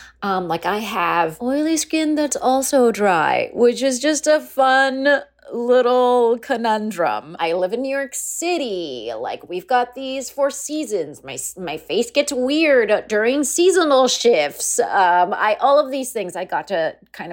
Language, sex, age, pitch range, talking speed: English, female, 30-49, 185-270 Hz, 160 wpm